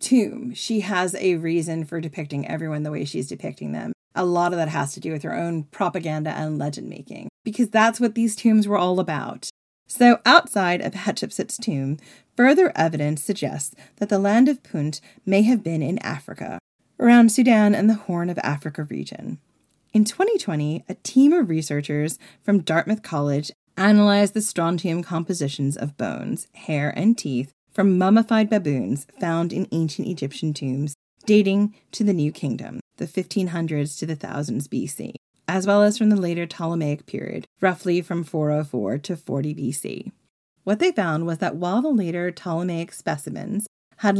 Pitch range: 155-210 Hz